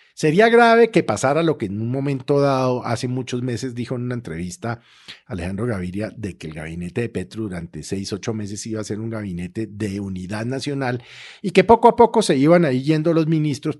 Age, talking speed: 50-69, 210 wpm